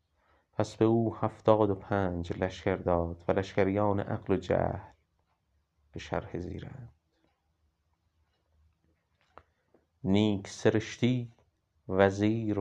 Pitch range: 80-105 Hz